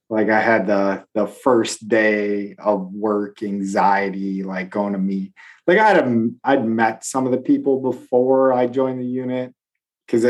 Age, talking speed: 30-49, 175 wpm